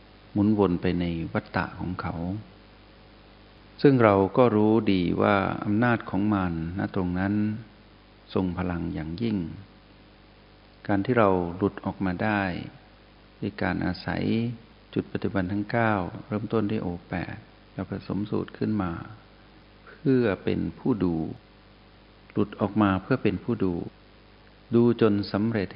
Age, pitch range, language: 60-79, 95-105 Hz, Thai